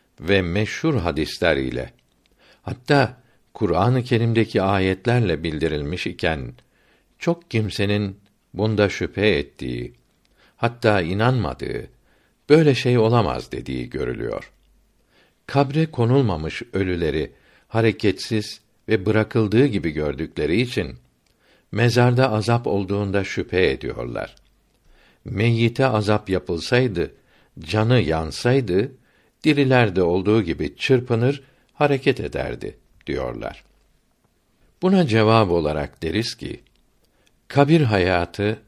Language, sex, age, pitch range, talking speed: Turkish, male, 60-79, 90-125 Hz, 85 wpm